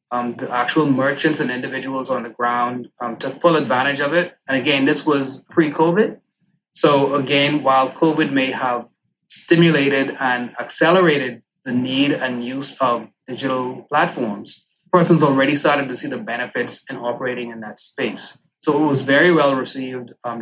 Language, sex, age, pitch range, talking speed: English, male, 20-39, 130-155 Hz, 160 wpm